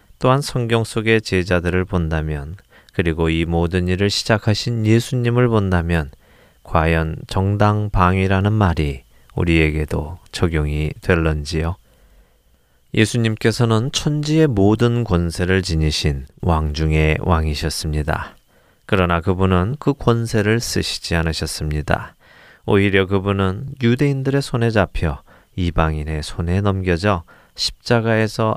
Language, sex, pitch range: Korean, male, 80-110 Hz